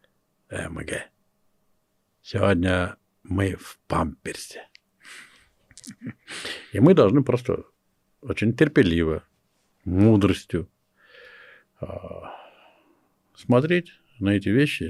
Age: 60-79